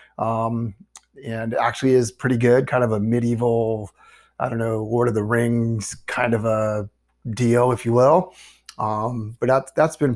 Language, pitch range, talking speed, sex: English, 120-150 Hz, 170 wpm, male